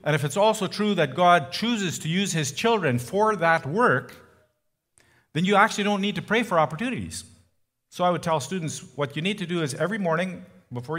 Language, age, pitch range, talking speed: English, 50-69, 115-175 Hz, 210 wpm